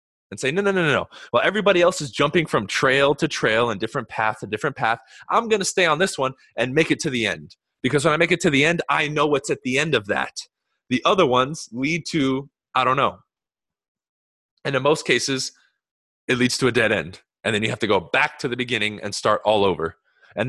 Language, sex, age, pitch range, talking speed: English, male, 20-39, 130-180 Hz, 245 wpm